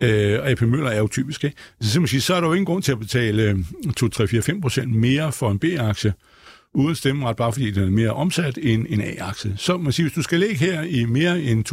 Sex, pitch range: male, 115-160 Hz